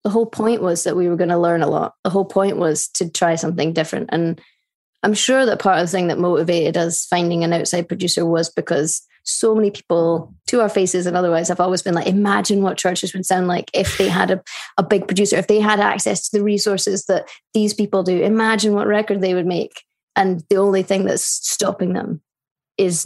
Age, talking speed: 20-39, 225 wpm